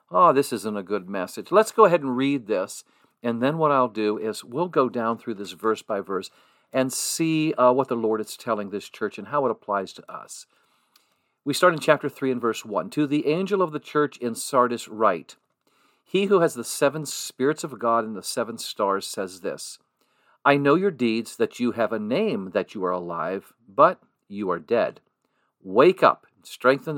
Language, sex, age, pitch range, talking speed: English, male, 50-69, 110-150 Hz, 205 wpm